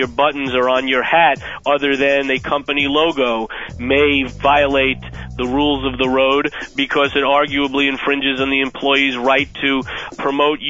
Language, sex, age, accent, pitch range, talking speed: English, male, 30-49, American, 130-150 Hz, 155 wpm